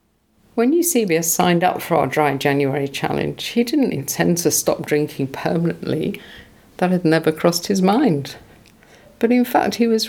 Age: 50-69